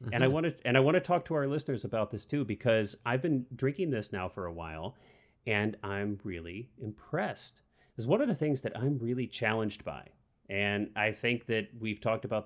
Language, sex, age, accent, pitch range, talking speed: English, male, 30-49, American, 100-125 Hz, 210 wpm